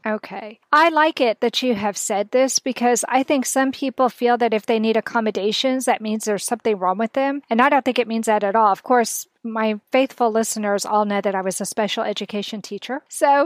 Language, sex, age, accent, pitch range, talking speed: English, female, 40-59, American, 220-270 Hz, 225 wpm